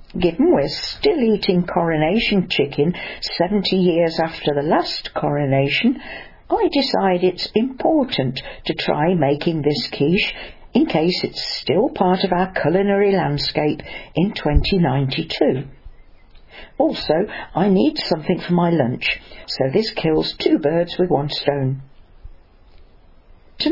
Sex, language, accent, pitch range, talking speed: female, English, British, 140-195 Hz, 120 wpm